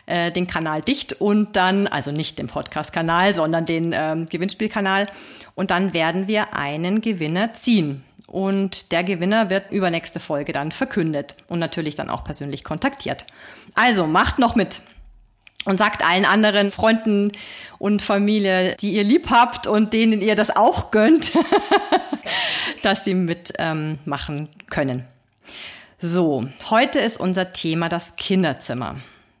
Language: German